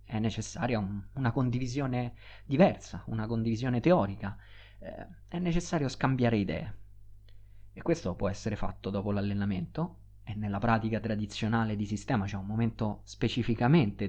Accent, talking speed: native, 135 wpm